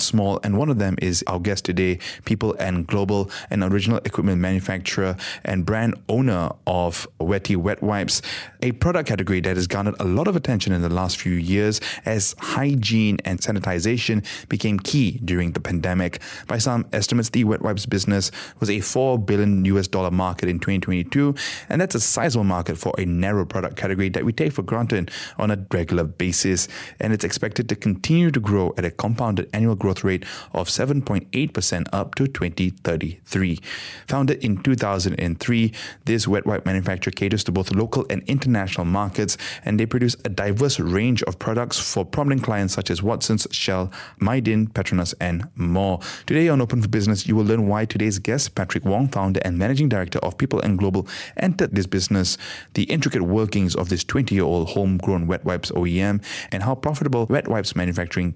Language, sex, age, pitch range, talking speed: English, male, 20-39, 95-115 Hz, 185 wpm